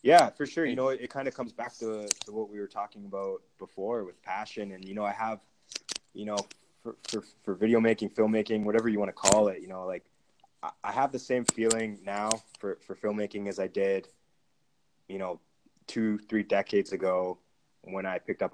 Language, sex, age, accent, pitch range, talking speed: English, male, 20-39, American, 100-110 Hz, 215 wpm